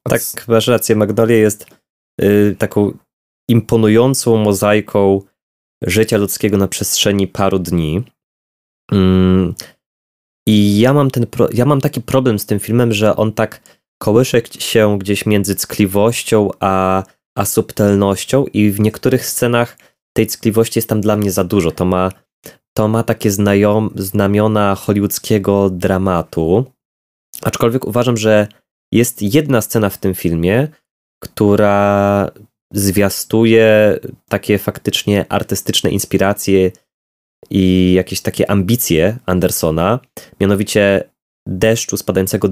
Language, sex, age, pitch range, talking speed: Polish, male, 20-39, 95-110 Hz, 115 wpm